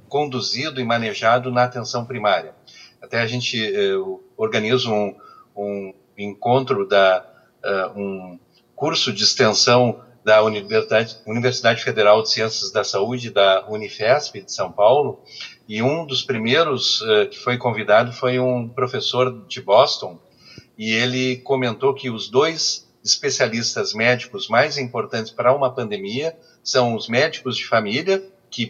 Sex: male